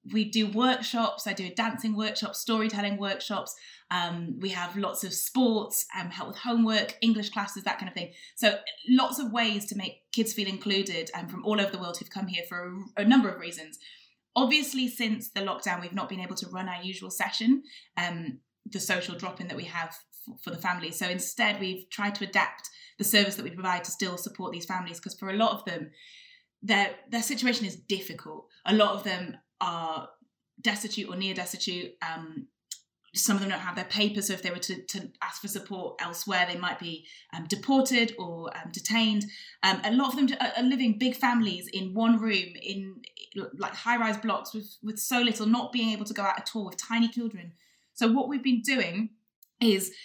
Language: English